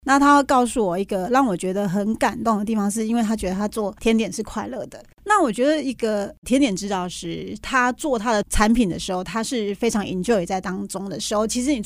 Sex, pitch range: female, 195-245 Hz